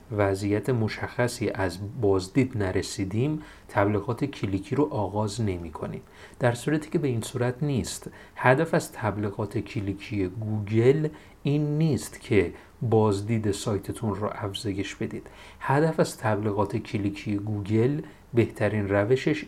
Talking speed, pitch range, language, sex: 115 wpm, 100-140 Hz, Persian, male